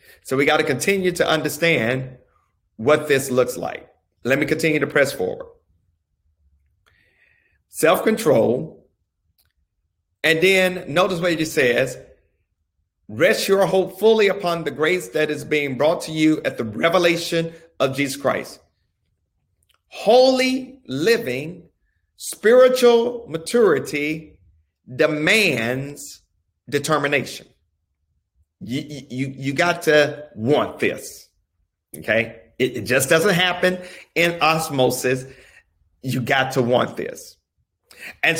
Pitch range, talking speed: 105-175 Hz, 110 wpm